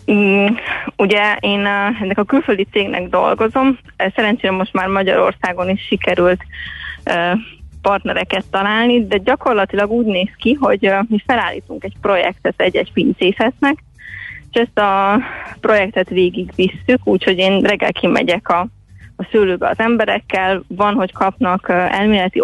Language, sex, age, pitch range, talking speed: Hungarian, female, 20-39, 185-225 Hz, 125 wpm